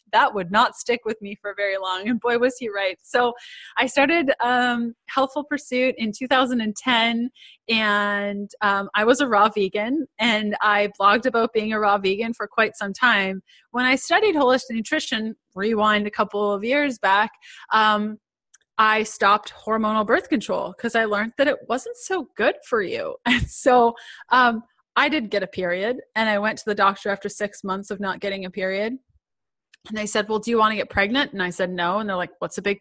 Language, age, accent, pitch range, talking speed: English, 20-39, American, 205-260 Hz, 200 wpm